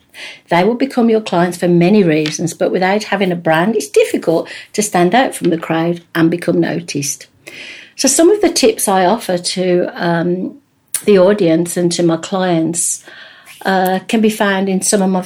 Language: English